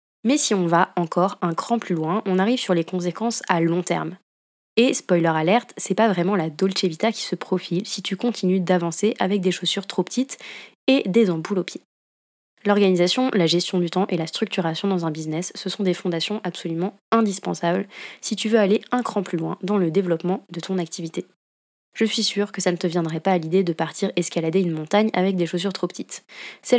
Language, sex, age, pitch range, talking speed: French, female, 20-39, 170-205 Hz, 215 wpm